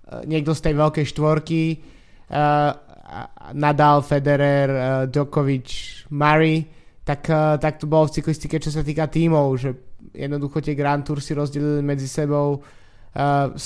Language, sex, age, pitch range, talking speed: Slovak, male, 20-39, 140-155 Hz, 135 wpm